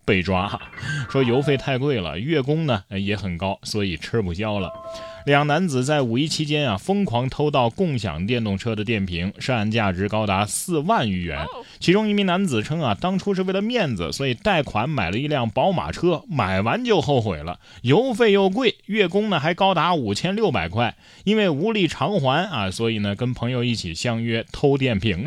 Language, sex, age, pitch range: Chinese, male, 20-39, 100-150 Hz